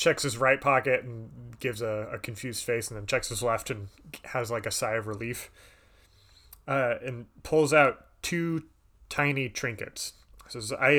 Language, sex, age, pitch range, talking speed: English, male, 30-49, 110-140 Hz, 170 wpm